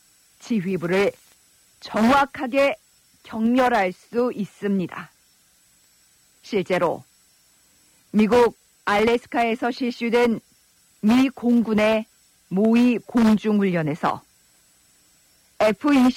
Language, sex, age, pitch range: Korean, female, 50-69, 195-255 Hz